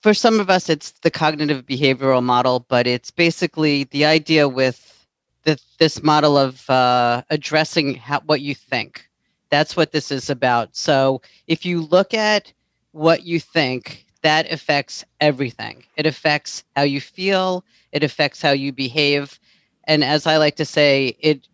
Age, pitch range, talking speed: 40-59, 130-160 Hz, 155 wpm